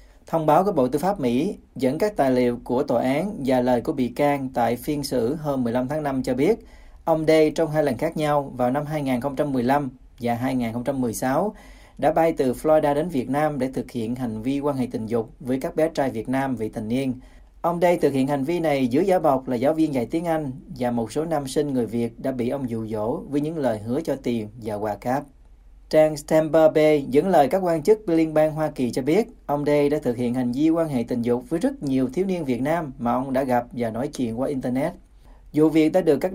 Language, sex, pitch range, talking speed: Vietnamese, male, 125-155 Hz, 245 wpm